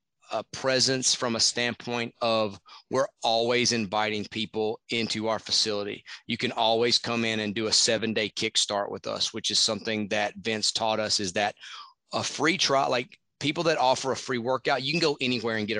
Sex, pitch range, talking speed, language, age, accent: male, 110-125 Hz, 195 wpm, English, 30-49, American